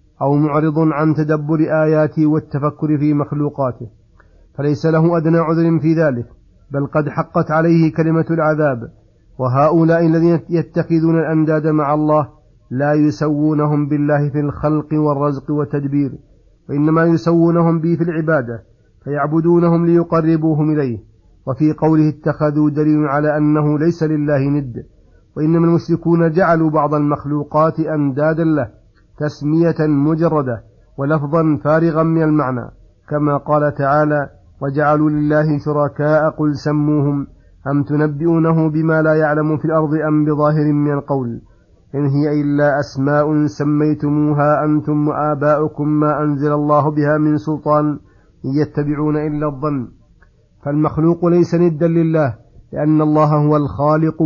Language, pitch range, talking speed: Arabic, 145-155 Hz, 120 wpm